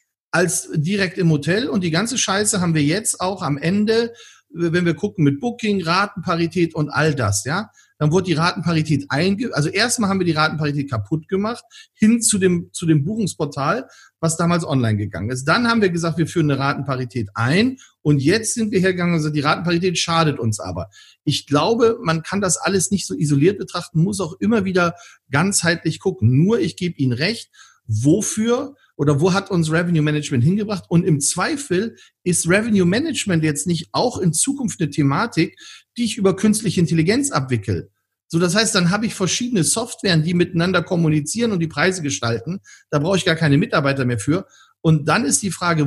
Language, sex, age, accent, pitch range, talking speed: German, male, 40-59, German, 150-195 Hz, 185 wpm